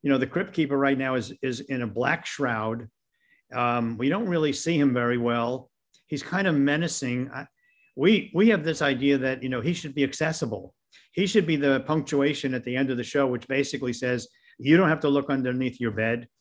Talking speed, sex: 220 wpm, male